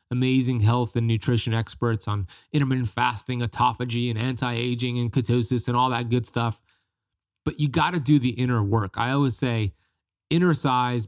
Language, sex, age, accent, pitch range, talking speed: English, male, 30-49, American, 110-130 Hz, 160 wpm